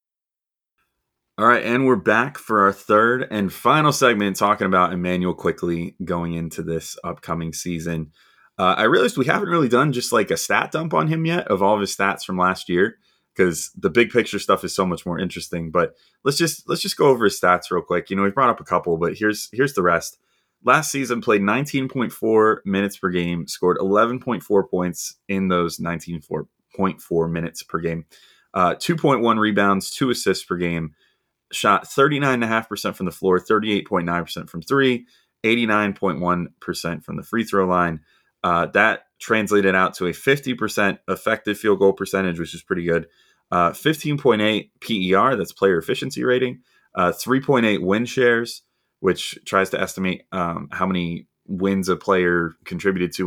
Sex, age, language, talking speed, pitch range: male, 30-49, English, 170 wpm, 90-115 Hz